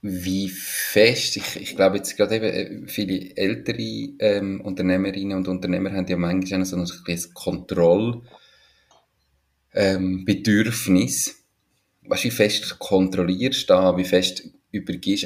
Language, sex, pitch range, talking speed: German, male, 95-110 Hz, 115 wpm